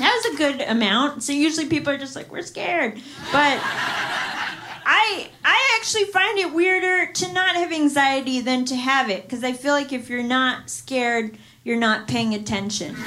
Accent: American